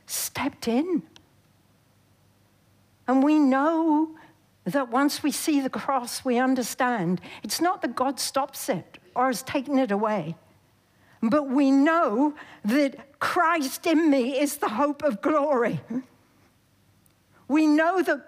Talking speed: 130 wpm